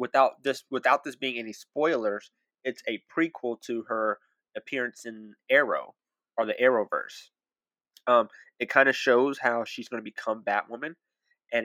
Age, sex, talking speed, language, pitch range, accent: 20-39, male, 145 wpm, English, 115-130 Hz, American